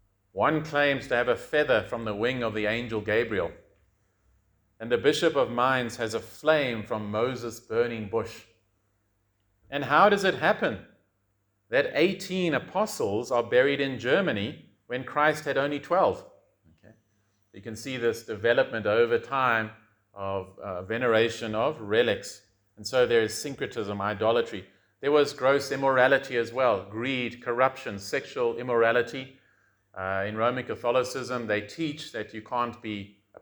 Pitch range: 100-130 Hz